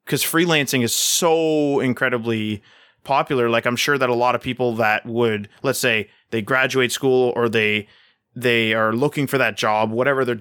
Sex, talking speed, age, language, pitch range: male, 180 wpm, 20-39, English, 115-140 Hz